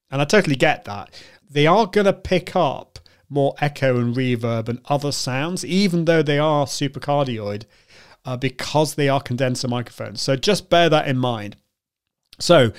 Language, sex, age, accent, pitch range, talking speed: English, male, 30-49, British, 125-160 Hz, 175 wpm